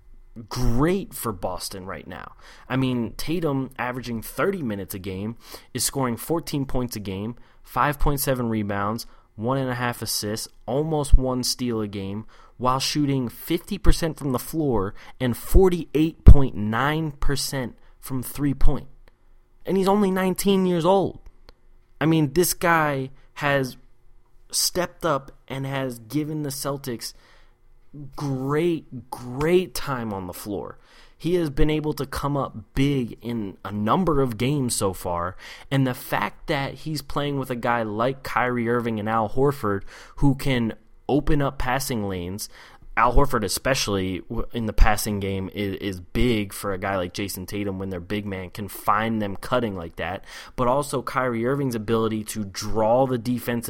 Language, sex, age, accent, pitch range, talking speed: English, male, 20-39, American, 110-140 Hz, 150 wpm